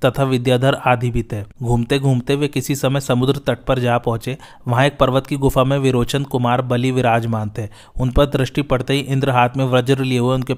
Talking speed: 205 wpm